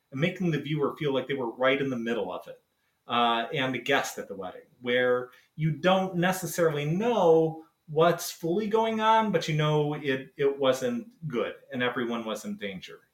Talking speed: 185 wpm